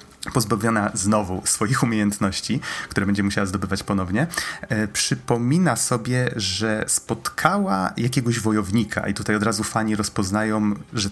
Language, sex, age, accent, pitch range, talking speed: Polish, male, 30-49, native, 100-140 Hz, 120 wpm